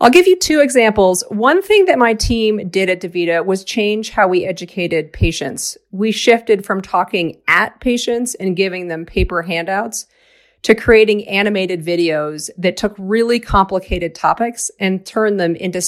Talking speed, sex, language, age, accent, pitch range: 165 wpm, female, English, 40-59, American, 175-220 Hz